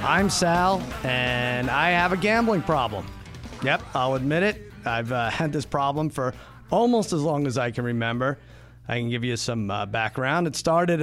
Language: English